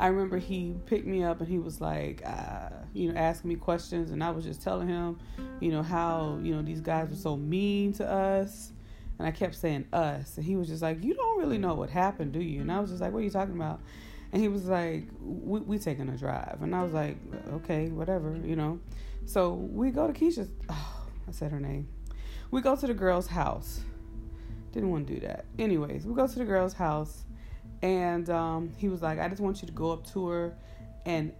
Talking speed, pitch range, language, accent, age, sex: 235 wpm, 150-185 Hz, English, American, 20-39, female